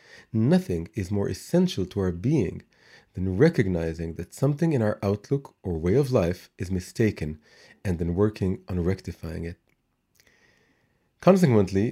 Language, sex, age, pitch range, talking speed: English, male, 40-59, 95-130 Hz, 135 wpm